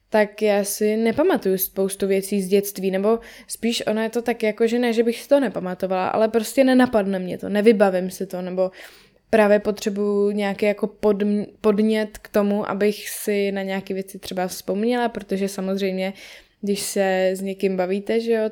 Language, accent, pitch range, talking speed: Czech, native, 195-215 Hz, 180 wpm